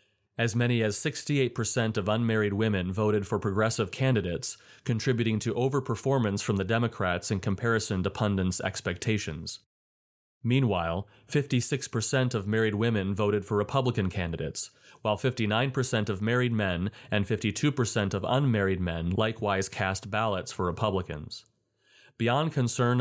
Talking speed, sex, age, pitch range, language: 125 wpm, male, 30-49, 100-125 Hz, English